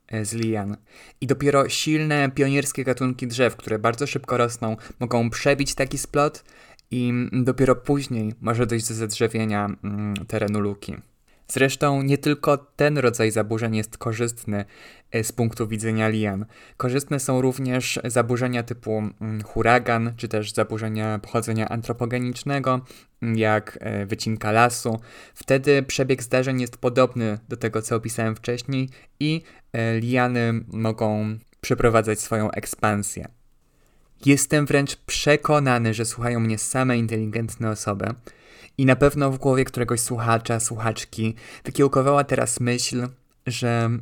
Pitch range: 110-135 Hz